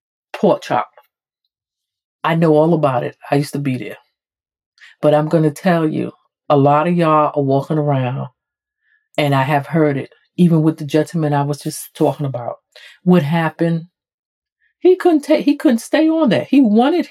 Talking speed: 180 wpm